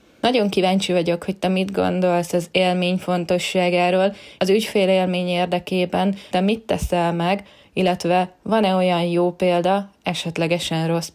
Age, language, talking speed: 20-39, Hungarian, 135 wpm